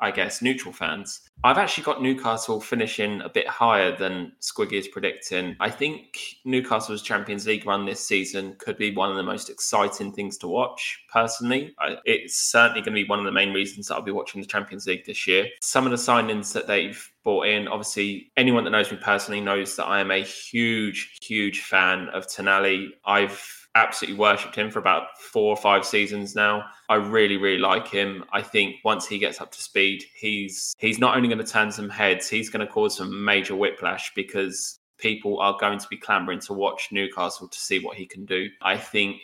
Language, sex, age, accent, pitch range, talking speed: English, male, 20-39, British, 100-115 Hz, 210 wpm